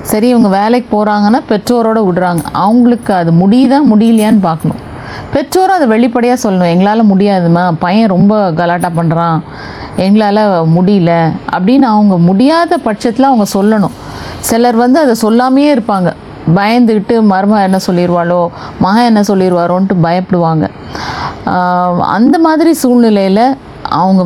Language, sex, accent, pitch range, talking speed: Tamil, female, native, 175-240 Hz, 115 wpm